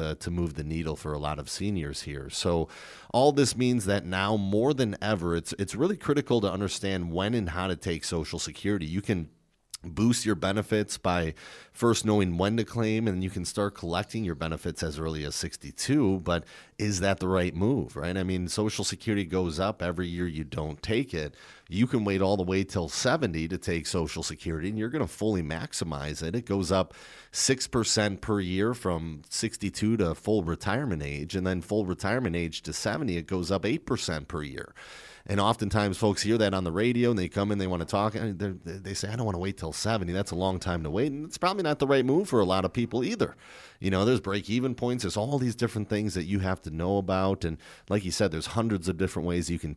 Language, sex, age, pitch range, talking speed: English, male, 40-59, 85-105 Hz, 230 wpm